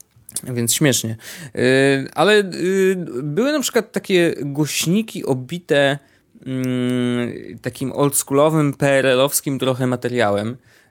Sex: male